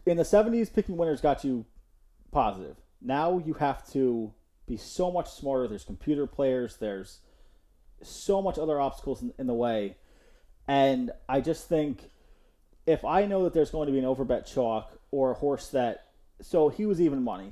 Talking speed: 180 wpm